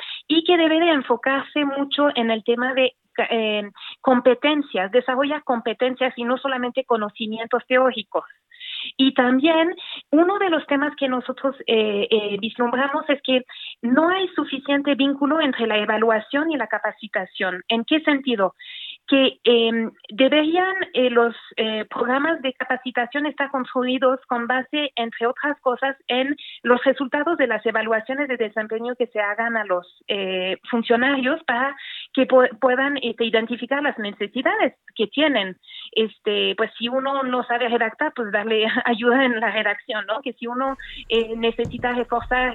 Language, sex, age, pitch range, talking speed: Spanish, female, 40-59, 230-285 Hz, 150 wpm